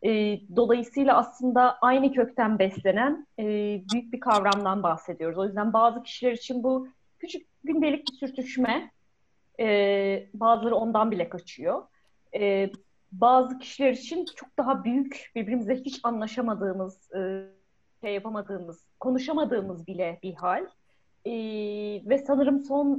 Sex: female